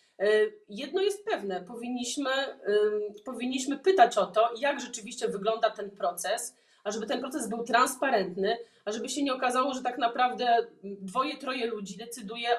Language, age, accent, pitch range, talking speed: Polish, 30-49, native, 215-265 Hz, 150 wpm